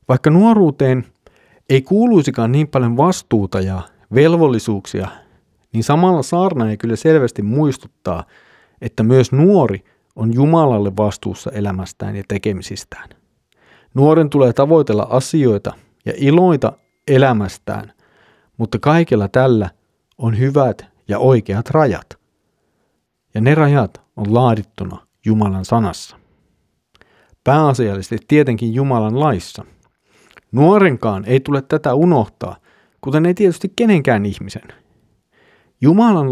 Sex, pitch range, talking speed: male, 105-140 Hz, 100 wpm